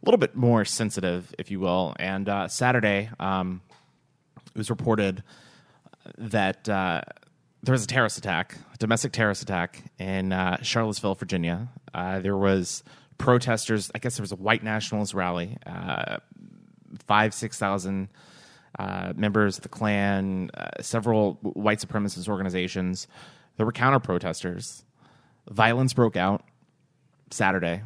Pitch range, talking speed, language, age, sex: 95-115 Hz, 135 wpm, English, 30-49, male